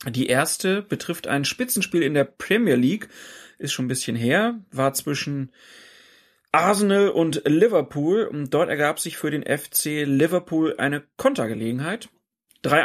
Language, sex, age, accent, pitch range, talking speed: German, male, 30-49, German, 135-180 Hz, 140 wpm